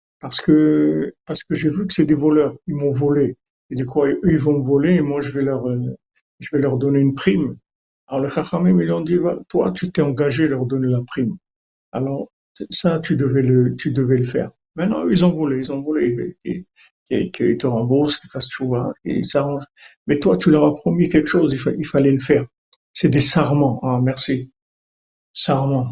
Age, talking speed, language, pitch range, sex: 50-69, 215 wpm, French, 135-155 Hz, male